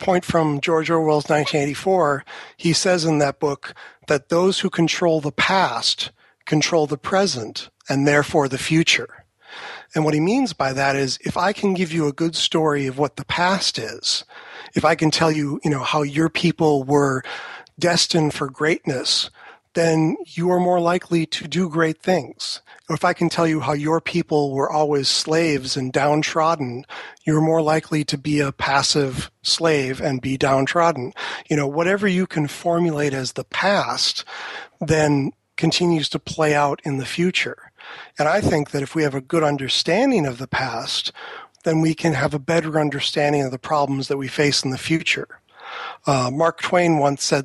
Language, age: English, 40-59